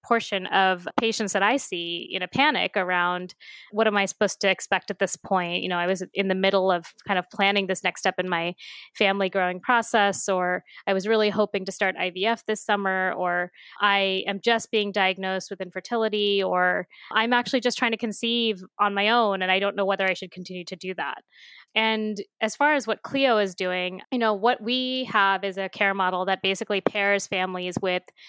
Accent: American